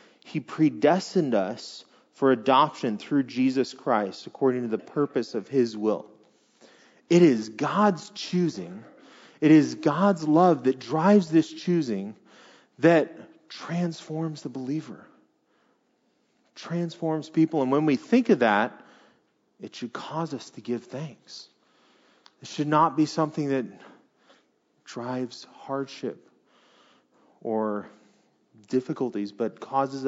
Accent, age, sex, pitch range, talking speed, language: American, 30-49, male, 130-165 Hz, 115 wpm, English